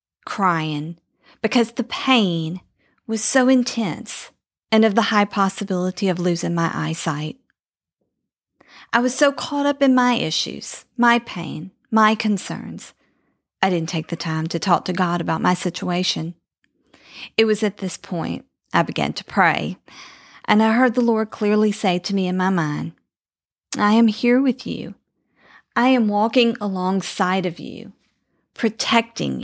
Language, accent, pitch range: English, American, 170-220 Hz